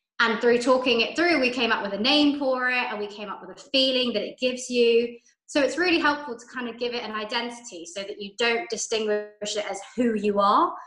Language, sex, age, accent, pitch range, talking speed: English, female, 20-39, British, 210-255 Hz, 250 wpm